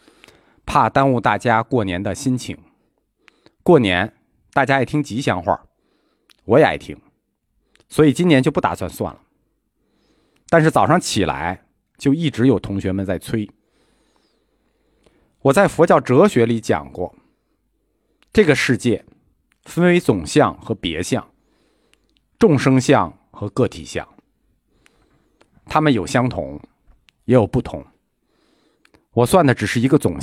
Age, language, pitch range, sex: 50-69, Chinese, 105-145 Hz, male